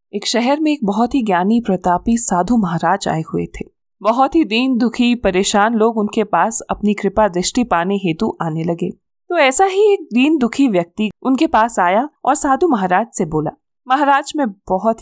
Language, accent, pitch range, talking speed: Hindi, native, 190-270 Hz, 185 wpm